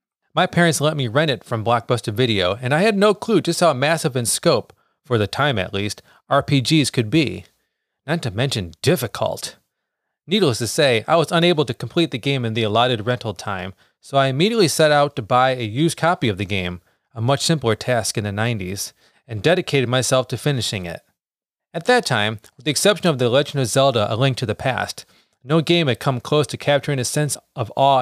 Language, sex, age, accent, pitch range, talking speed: English, male, 30-49, American, 115-150 Hz, 210 wpm